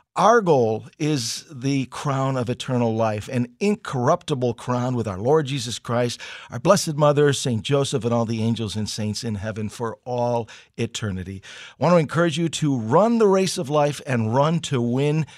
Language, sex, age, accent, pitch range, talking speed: English, male, 50-69, American, 115-145 Hz, 185 wpm